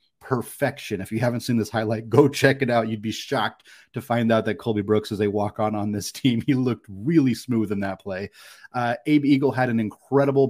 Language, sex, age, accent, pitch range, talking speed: English, male, 30-49, American, 105-125 Hz, 230 wpm